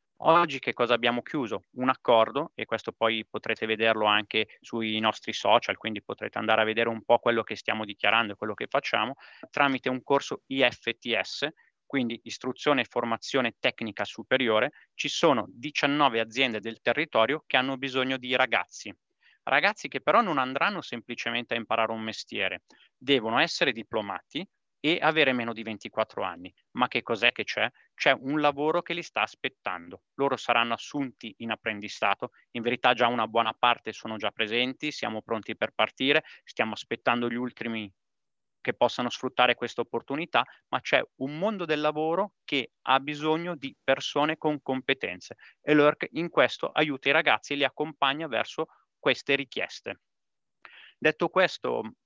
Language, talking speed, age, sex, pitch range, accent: Italian, 160 wpm, 30-49, male, 115-140 Hz, native